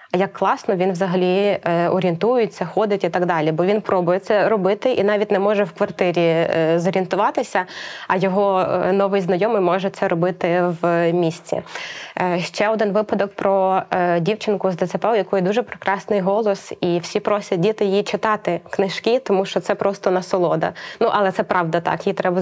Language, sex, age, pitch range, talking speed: Ukrainian, female, 20-39, 180-205 Hz, 165 wpm